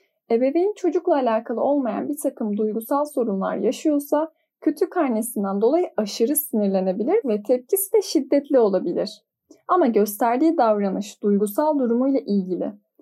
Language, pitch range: Turkish, 210-290 Hz